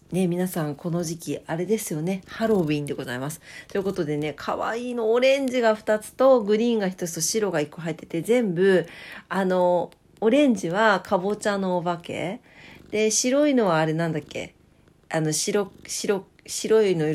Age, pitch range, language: 40-59, 160-215 Hz, Japanese